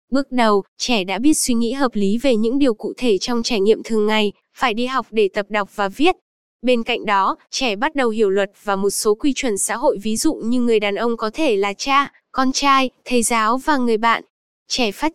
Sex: female